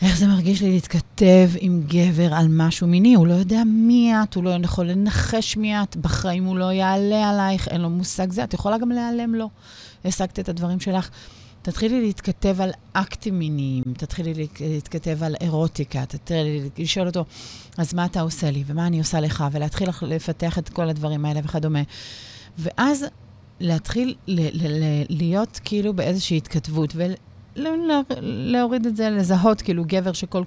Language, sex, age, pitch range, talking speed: Hebrew, female, 30-49, 160-200 Hz, 170 wpm